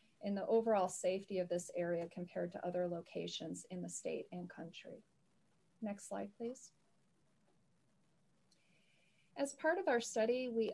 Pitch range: 180-225 Hz